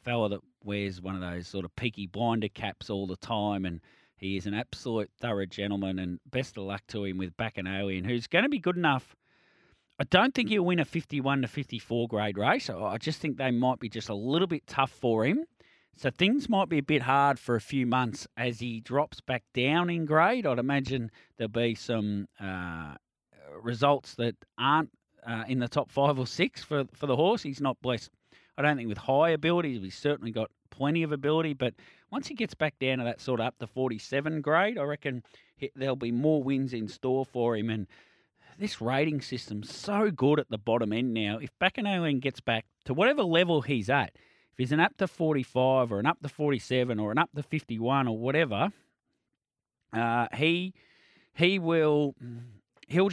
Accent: Australian